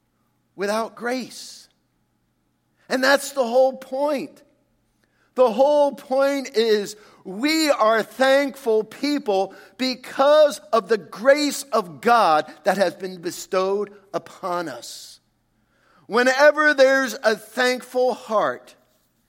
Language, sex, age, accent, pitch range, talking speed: English, male, 50-69, American, 200-270 Hz, 100 wpm